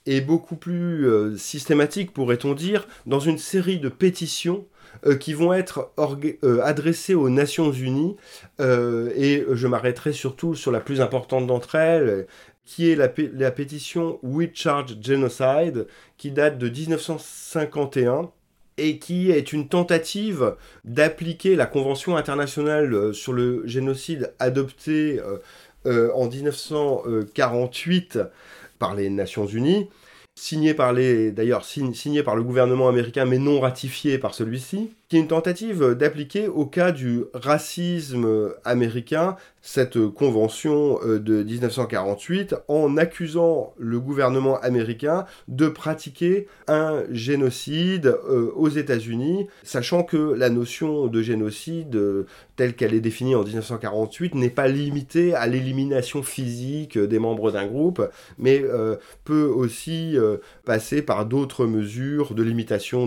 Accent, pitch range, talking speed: French, 120-160 Hz, 130 wpm